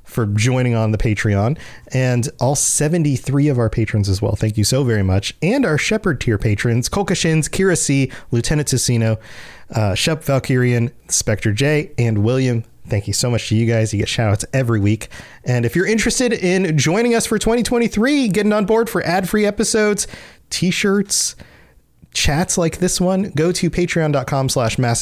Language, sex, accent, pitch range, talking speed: English, male, American, 110-165 Hz, 175 wpm